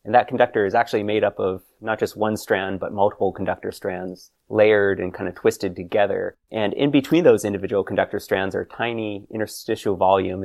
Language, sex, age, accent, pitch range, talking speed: English, male, 30-49, American, 100-115 Hz, 190 wpm